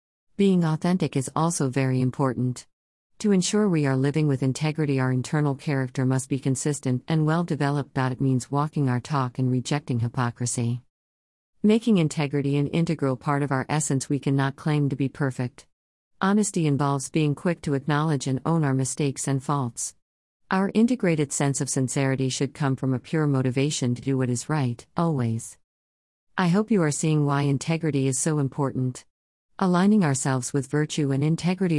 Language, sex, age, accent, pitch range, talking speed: English, female, 50-69, American, 130-155 Hz, 170 wpm